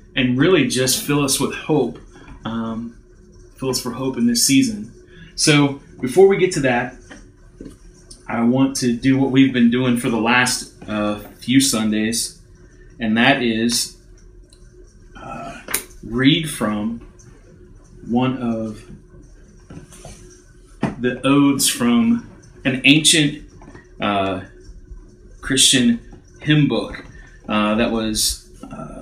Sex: male